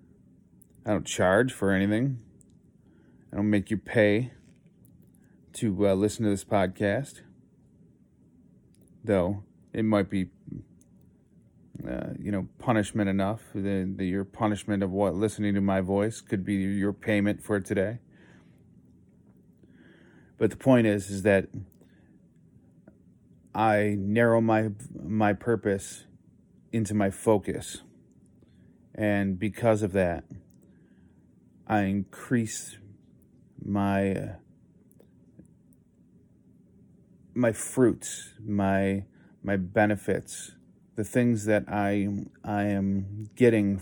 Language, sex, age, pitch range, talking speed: English, male, 30-49, 95-110 Hz, 100 wpm